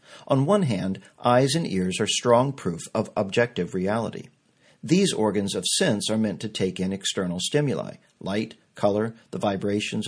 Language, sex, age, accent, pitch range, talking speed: English, male, 50-69, American, 100-140 Hz, 160 wpm